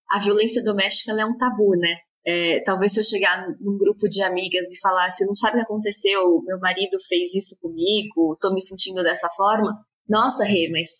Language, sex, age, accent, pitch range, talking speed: Portuguese, female, 20-39, Brazilian, 190-240 Hz, 205 wpm